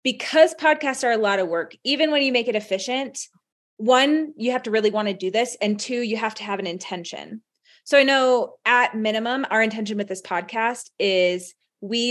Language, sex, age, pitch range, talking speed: English, female, 30-49, 205-255 Hz, 210 wpm